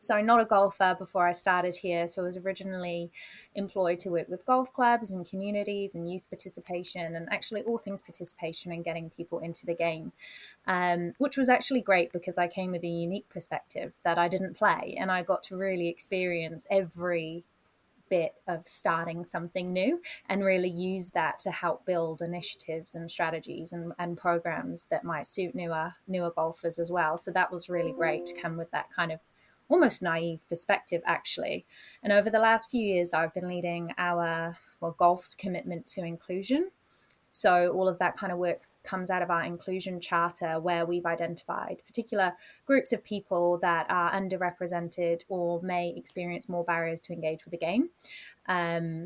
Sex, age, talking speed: female, 20-39, 180 wpm